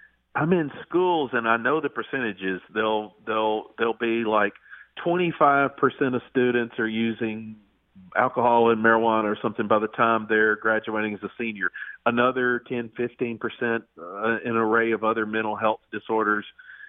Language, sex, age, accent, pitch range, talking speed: English, male, 50-69, American, 110-125 Hz, 150 wpm